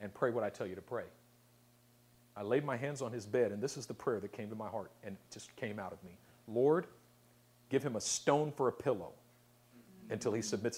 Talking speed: 235 wpm